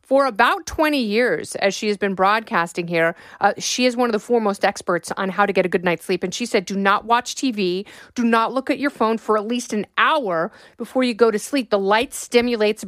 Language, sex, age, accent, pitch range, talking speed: English, female, 30-49, American, 195-240 Hz, 240 wpm